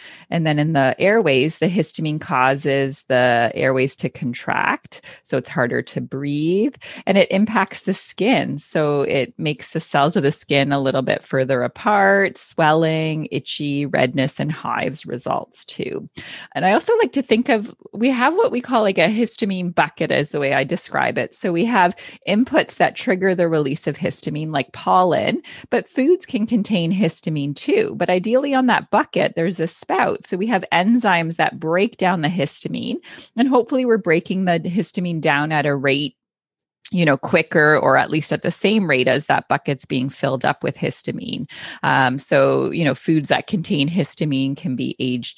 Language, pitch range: English, 140-195 Hz